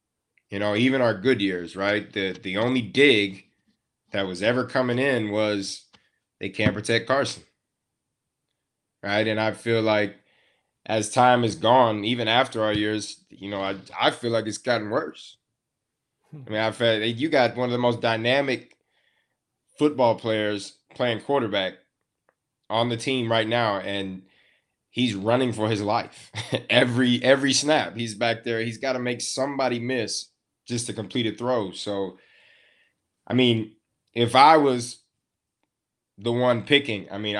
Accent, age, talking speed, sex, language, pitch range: American, 20-39, 155 wpm, male, English, 105-125 Hz